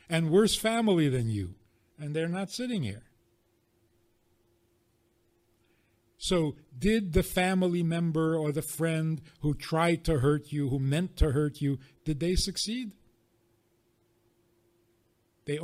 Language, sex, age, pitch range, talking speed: English, male, 50-69, 115-165 Hz, 125 wpm